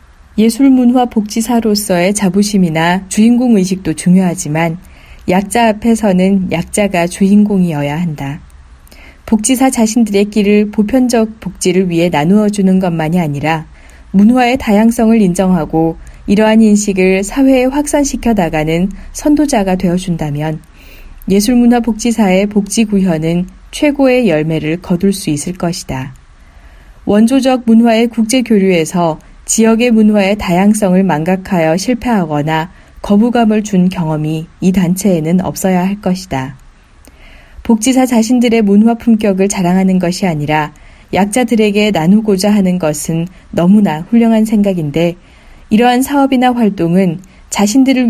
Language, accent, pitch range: Korean, native, 170-225 Hz